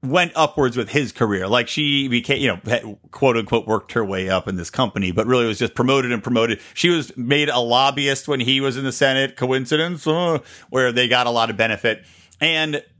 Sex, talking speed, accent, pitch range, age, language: male, 215 wpm, American, 115-150 Hz, 40-59, English